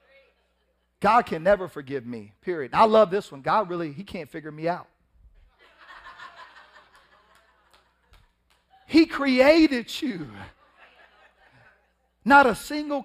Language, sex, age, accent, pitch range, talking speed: English, male, 40-59, American, 125-180 Hz, 105 wpm